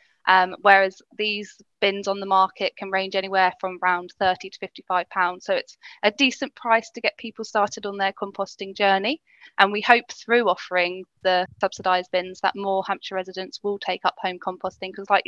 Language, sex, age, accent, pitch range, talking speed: English, female, 10-29, British, 185-210 Hz, 190 wpm